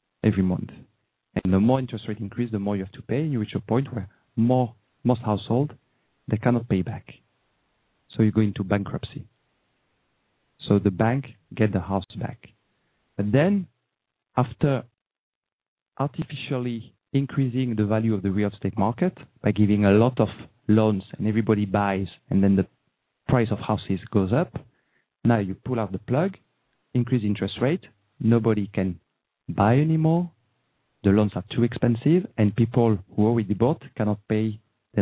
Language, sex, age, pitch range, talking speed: English, male, 40-59, 100-125 Hz, 160 wpm